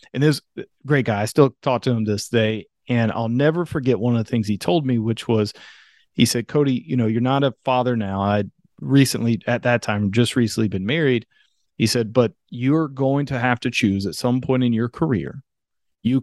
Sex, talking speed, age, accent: male, 220 wpm, 40-59, American